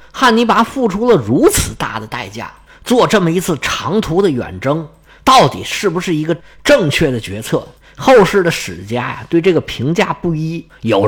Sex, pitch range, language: male, 130-190 Hz, Chinese